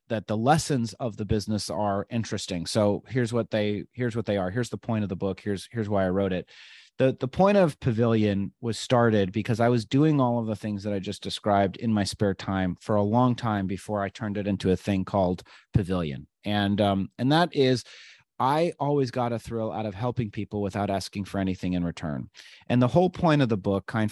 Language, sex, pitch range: English, male, 100-125 Hz